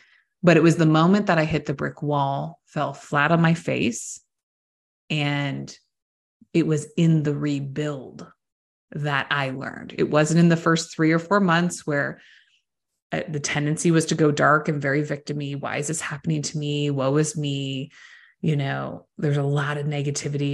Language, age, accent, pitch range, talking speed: English, 20-39, American, 140-160 Hz, 175 wpm